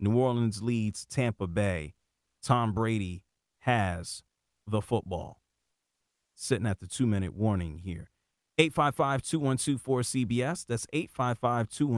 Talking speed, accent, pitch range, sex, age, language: 145 wpm, American, 115-150 Hz, male, 30-49, English